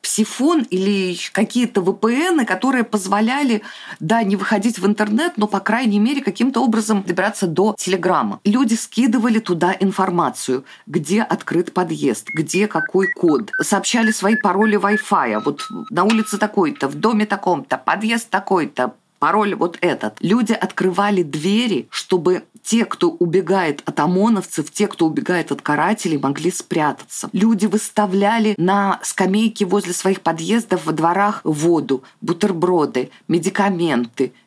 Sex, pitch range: female, 175-220 Hz